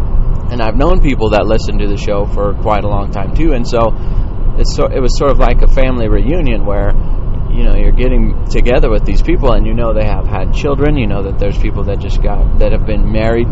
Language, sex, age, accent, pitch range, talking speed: English, male, 30-49, American, 100-120 Hz, 245 wpm